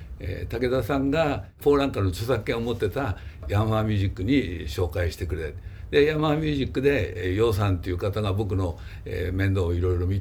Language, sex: Japanese, male